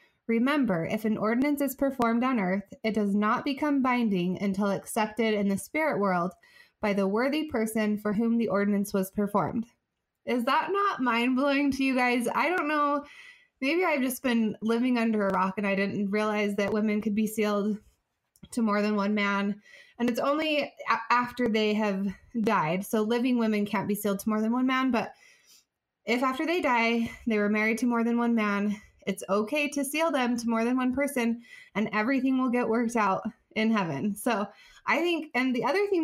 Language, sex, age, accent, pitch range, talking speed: English, female, 20-39, American, 210-260 Hz, 195 wpm